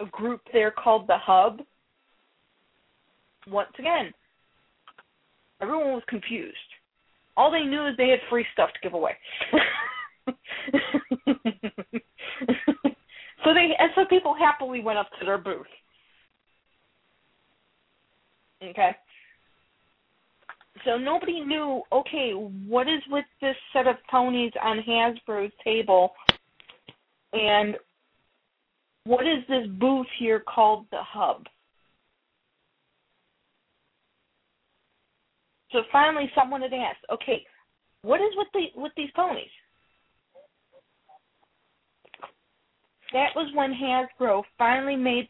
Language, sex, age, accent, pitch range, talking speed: English, female, 30-49, American, 225-285 Hz, 100 wpm